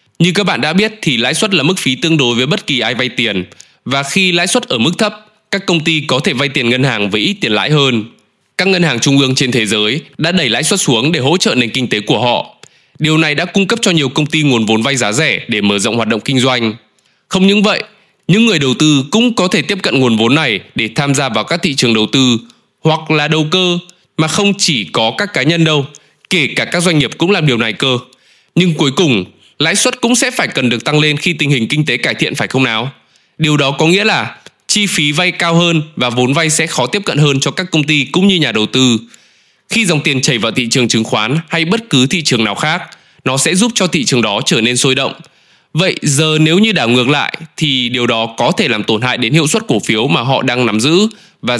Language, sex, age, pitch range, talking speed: Vietnamese, male, 20-39, 125-175 Hz, 265 wpm